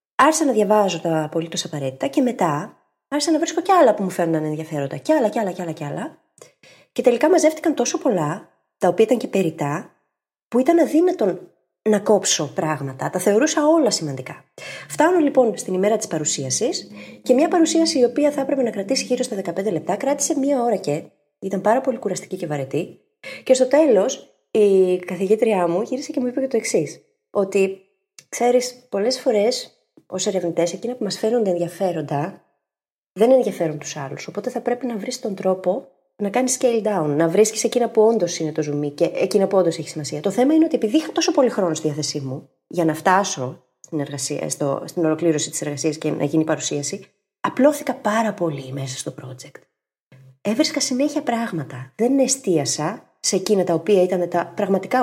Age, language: 20-39, Greek